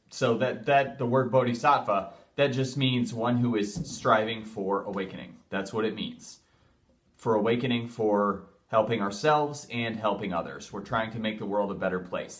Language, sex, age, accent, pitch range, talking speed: English, male, 30-49, American, 95-115 Hz, 175 wpm